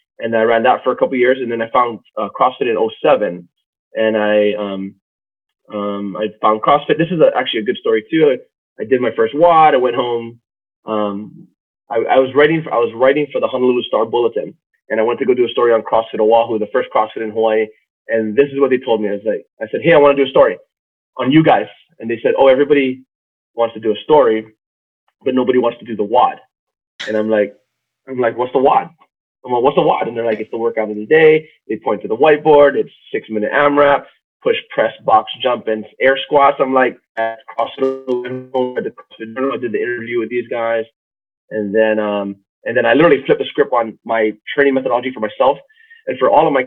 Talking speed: 230 wpm